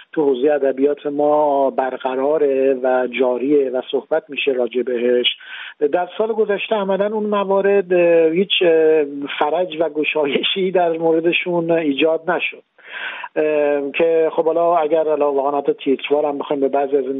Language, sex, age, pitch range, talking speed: Persian, male, 50-69, 130-155 Hz, 135 wpm